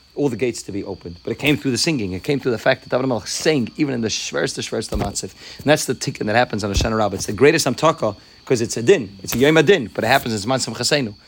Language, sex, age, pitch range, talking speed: English, male, 30-49, 105-130 Hz, 300 wpm